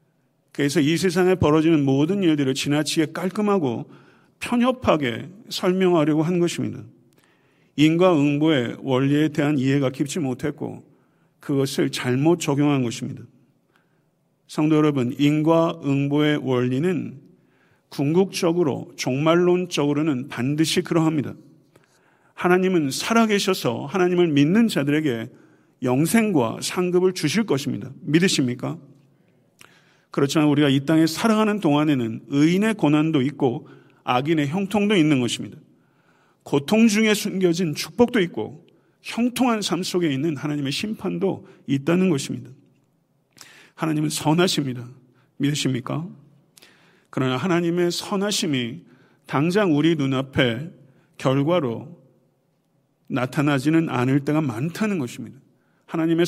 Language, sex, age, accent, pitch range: Korean, male, 50-69, native, 135-175 Hz